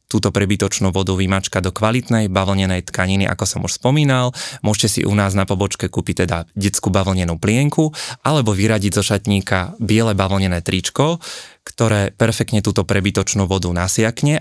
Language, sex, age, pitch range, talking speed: Slovak, male, 20-39, 95-115 Hz, 150 wpm